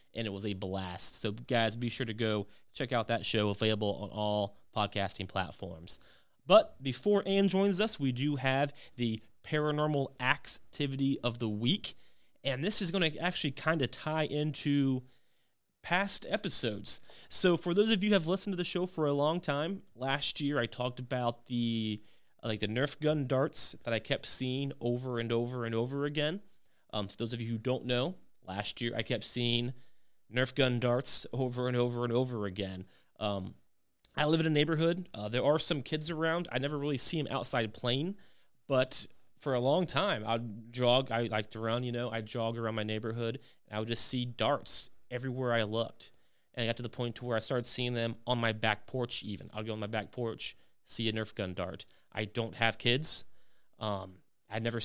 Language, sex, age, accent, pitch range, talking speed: English, male, 30-49, American, 110-140 Hz, 200 wpm